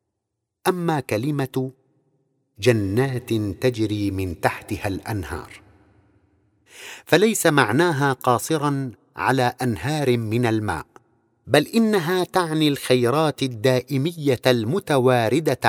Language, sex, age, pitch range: Arabic, male, 50-69, 110-145 Hz